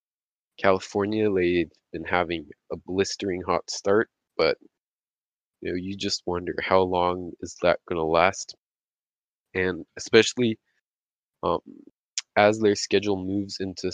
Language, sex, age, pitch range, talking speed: English, male, 20-39, 90-100 Hz, 125 wpm